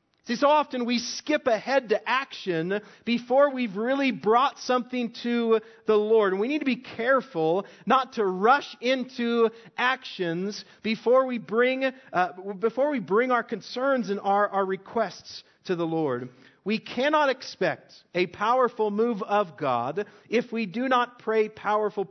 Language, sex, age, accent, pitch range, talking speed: English, male, 40-59, American, 165-235 Hz, 155 wpm